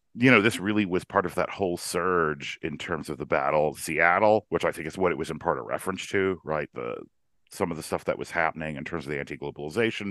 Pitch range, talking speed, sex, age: 75-90 Hz, 255 wpm, male, 40-59